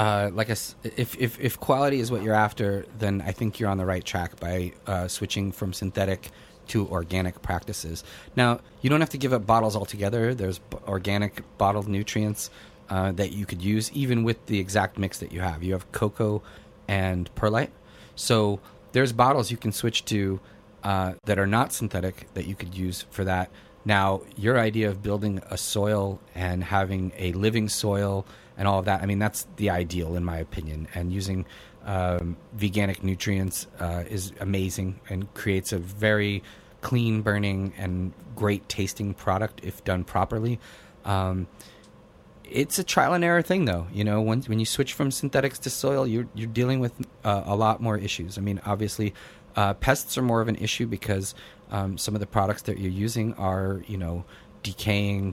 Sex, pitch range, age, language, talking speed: male, 95-110 Hz, 30-49, English, 185 wpm